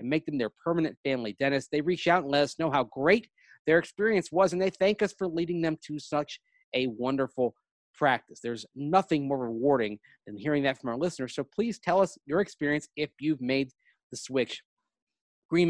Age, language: 30-49, English